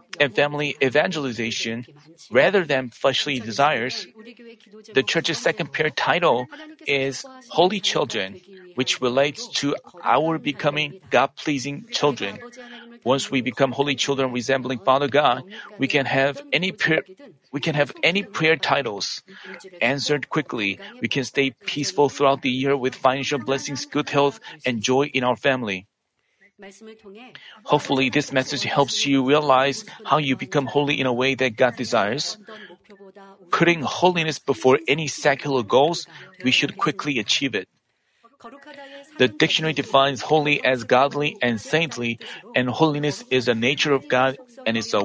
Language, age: Korean, 40-59